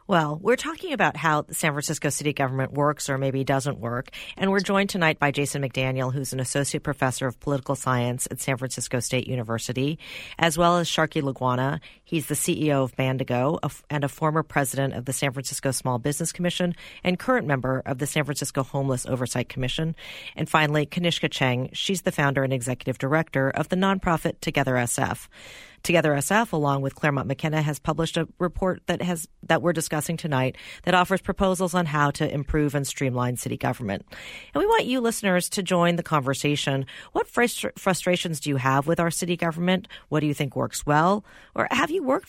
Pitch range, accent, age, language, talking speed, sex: 135-175 Hz, American, 40-59, English, 190 wpm, female